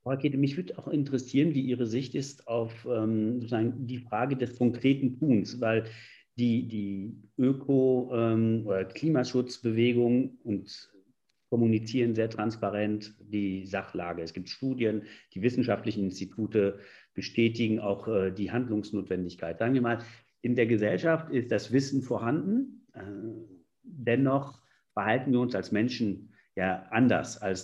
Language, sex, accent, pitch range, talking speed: German, male, German, 110-140 Hz, 125 wpm